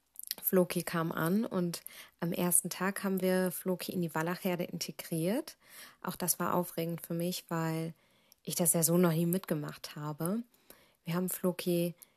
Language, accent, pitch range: German, German, 170-190 Hz